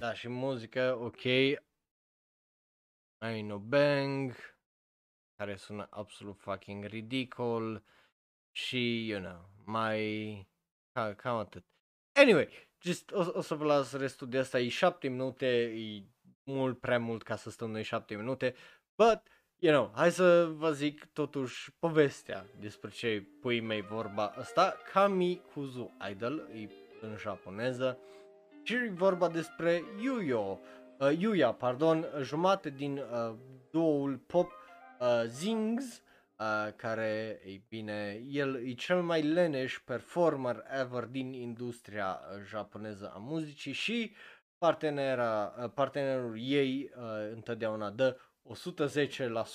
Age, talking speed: 20-39, 120 wpm